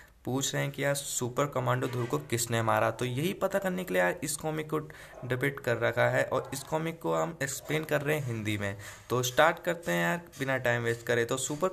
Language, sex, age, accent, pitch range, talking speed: Hindi, male, 20-39, native, 115-140 Hz, 240 wpm